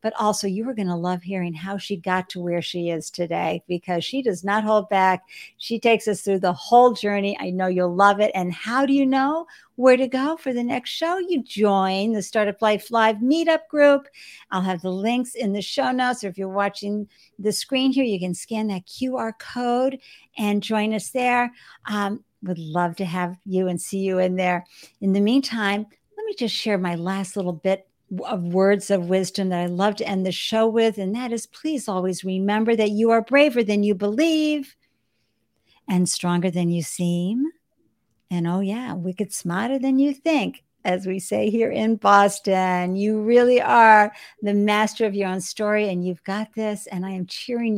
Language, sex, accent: English, female, American